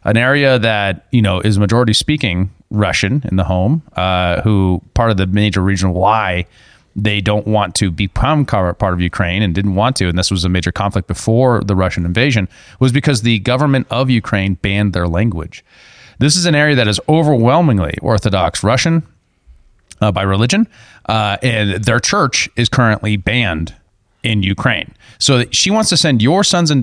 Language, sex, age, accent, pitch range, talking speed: English, male, 30-49, American, 95-130 Hz, 180 wpm